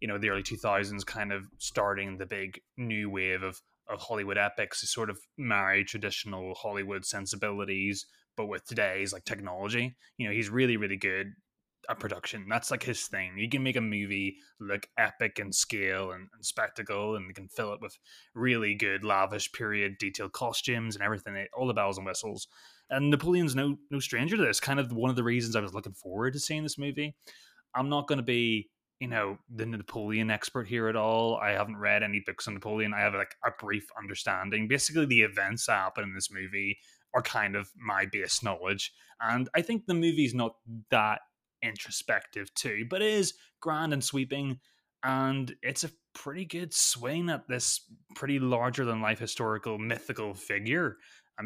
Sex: male